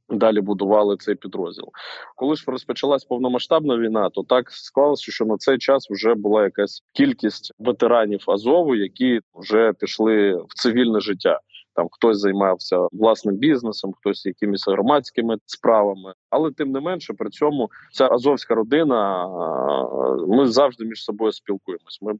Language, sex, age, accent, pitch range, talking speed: Ukrainian, male, 20-39, native, 105-125 Hz, 140 wpm